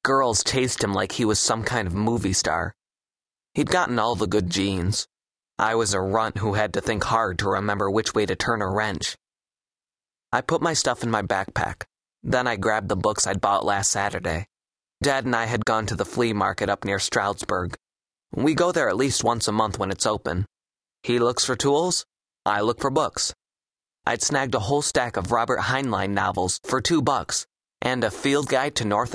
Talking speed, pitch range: 205 wpm, 100-125 Hz